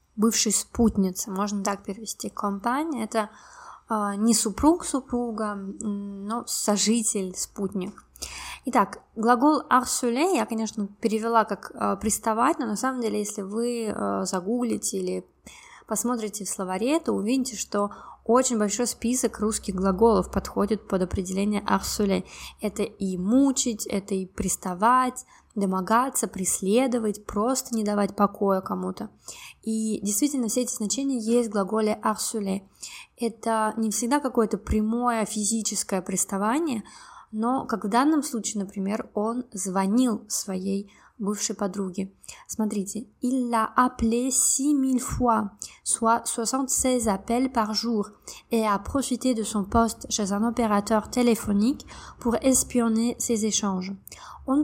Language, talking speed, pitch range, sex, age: Russian, 110 wpm, 200-240 Hz, female, 20-39